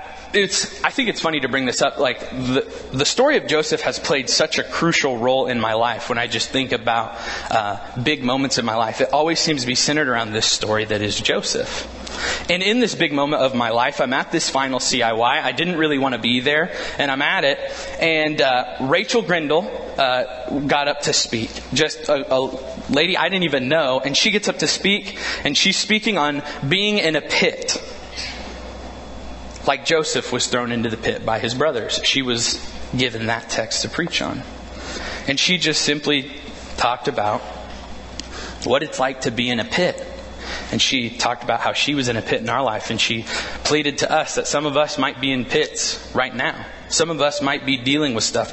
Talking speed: 210 wpm